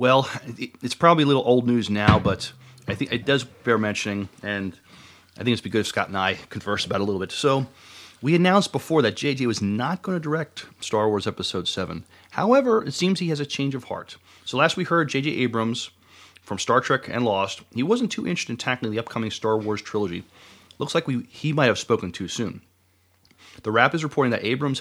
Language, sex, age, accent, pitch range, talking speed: English, male, 30-49, American, 105-135 Hz, 225 wpm